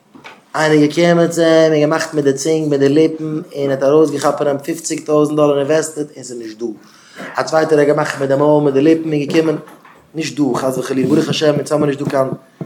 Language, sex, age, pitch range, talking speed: English, male, 20-39, 140-160 Hz, 175 wpm